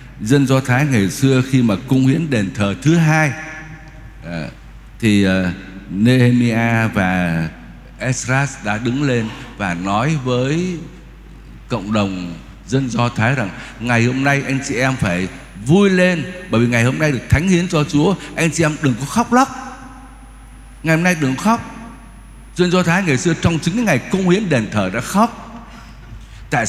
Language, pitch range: Vietnamese, 120-180 Hz